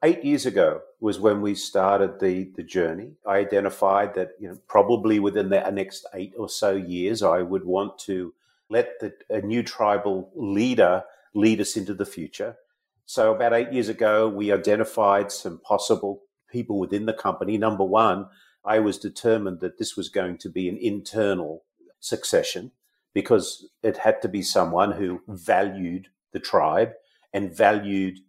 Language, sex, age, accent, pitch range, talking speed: English, male, 50-69, Australian, 95-120 Hz, 155 wpm